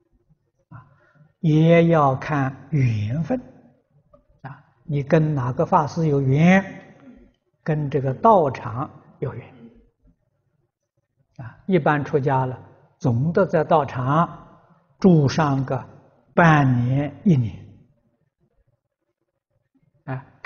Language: Chinese